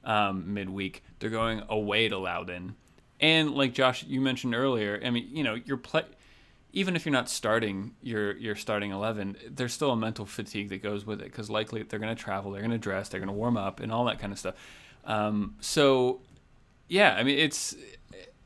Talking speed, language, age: 210 wpm, English, 30-49